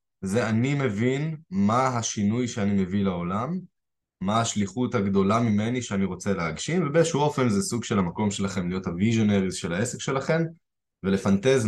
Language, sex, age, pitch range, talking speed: Hebrew, male, 20-39, 100-135 Hz, 145 wpm